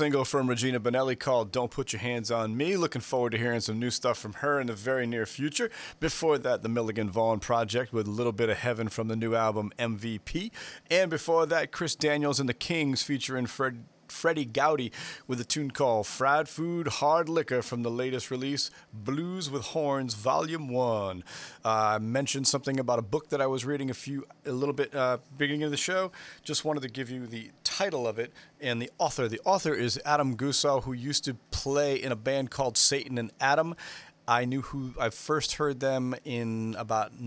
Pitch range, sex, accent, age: 120-145 Hz, male, American, 40-59